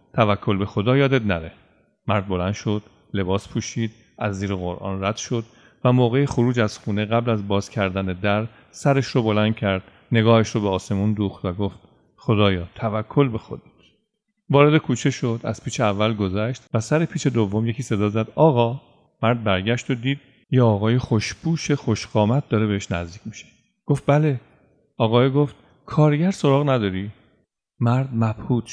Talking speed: 160 wpm